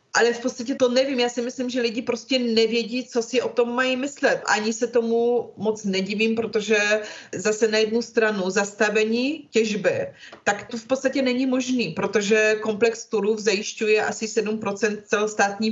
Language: Czech